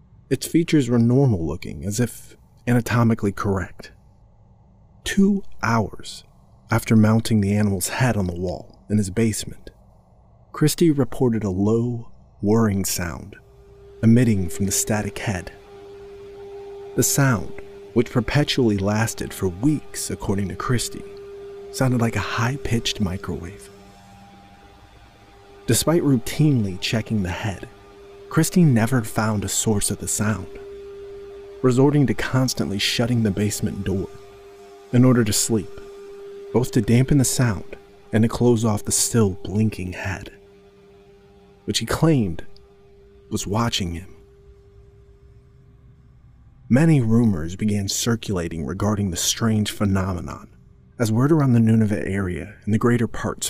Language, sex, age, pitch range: English, male, 40-59, 100-125 Hz